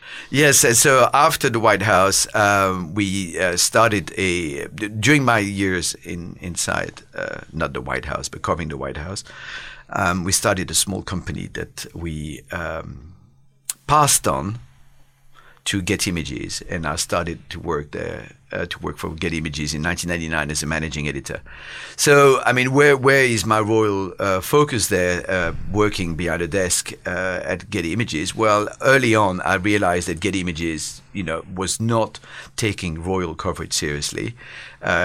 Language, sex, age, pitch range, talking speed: English, male, 50-69, 80-105 Hz, 165 wpm